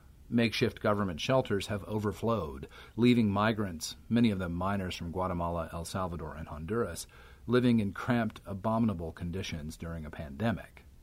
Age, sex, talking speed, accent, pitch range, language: 40-59, male, 135 wpm, American, 85-115 Hz, English